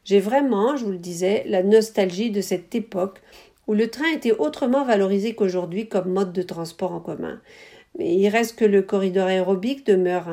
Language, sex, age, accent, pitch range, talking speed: French, female, 50-69, French, 185-235 Hz, 185 wpm